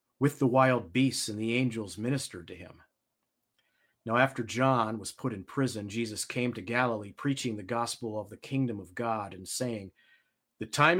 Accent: American